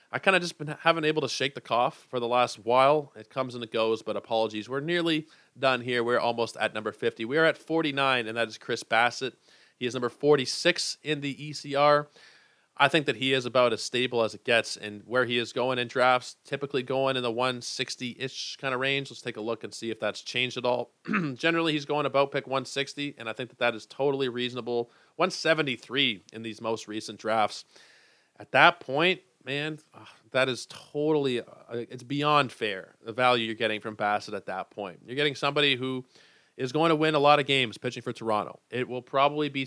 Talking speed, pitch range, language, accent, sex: 215 wpm, 120-145 Hz, English, American, male